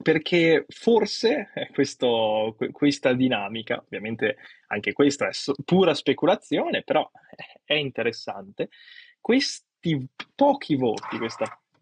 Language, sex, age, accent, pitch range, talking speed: Italian, male, 20-39, native, 125-180 Hz, 90 wpm